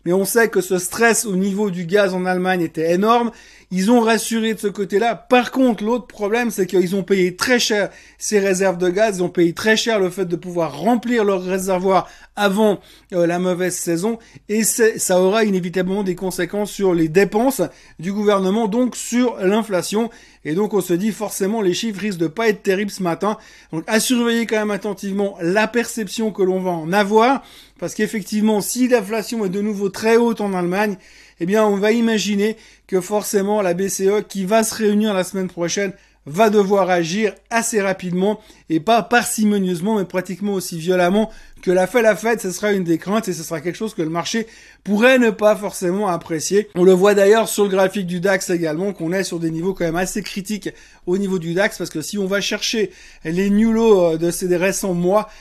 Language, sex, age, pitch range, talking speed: French, male, 30-49, 185-220 Hz, 205 wpm